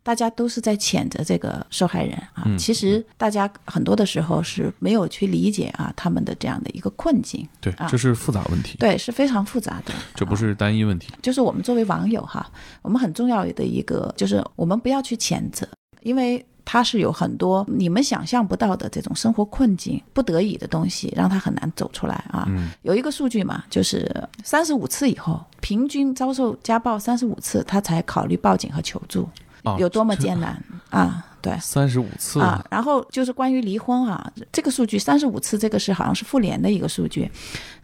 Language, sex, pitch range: Chinese, female, 180-250 Hz